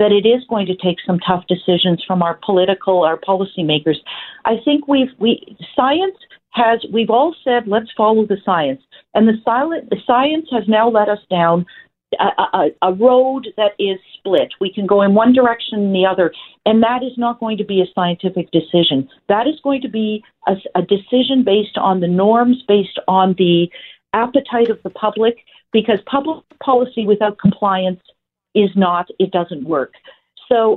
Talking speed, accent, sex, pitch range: 180 wpm, American, female, 195-250 Hz